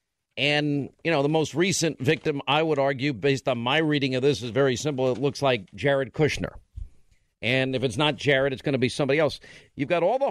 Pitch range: 130-165 Hz